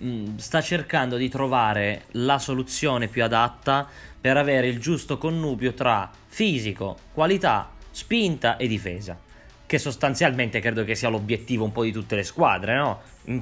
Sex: male